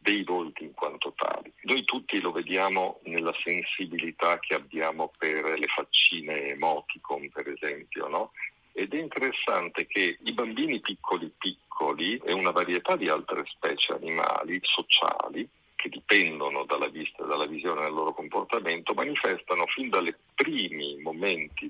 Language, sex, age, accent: Italian, male, 50-69, native